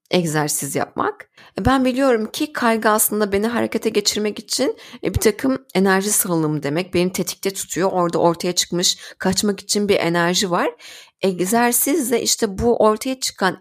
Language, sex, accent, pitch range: Turkish, female, native, 170-225 Hz